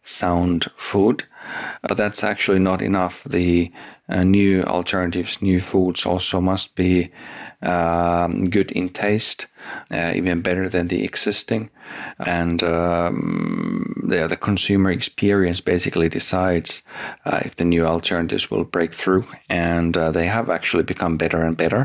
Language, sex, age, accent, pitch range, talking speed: English, male, 40-59, Finnish, 85-95 Hz, 135 wpm